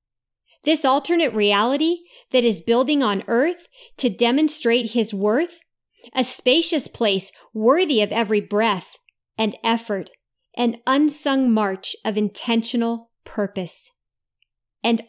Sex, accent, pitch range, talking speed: female, American, 200-265 Hz, 110 wpm